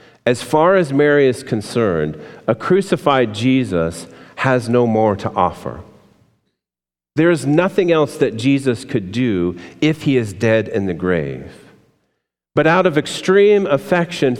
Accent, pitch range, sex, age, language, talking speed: American, 105-145 Hz, male, 40-59, English, 140 wpm